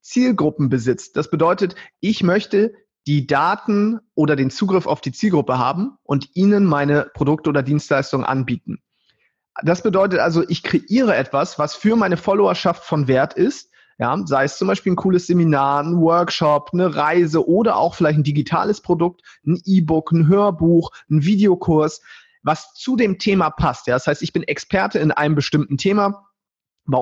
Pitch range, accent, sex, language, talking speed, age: 145-190 Hz, German, male, German, 160 wpm, 30-49